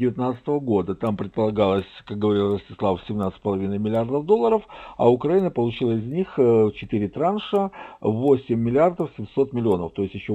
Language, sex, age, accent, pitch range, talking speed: Russian, male, 50-69, native, 100-155 Hz, 135 wpm